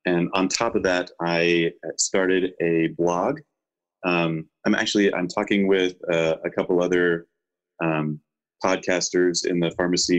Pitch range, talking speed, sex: 80-100 Hz, 140 wpm, male